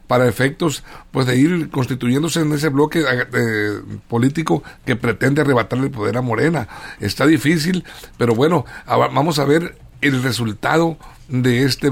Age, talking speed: 60-79, 145 wpm